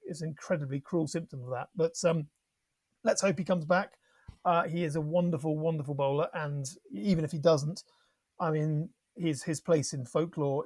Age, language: 30-49, English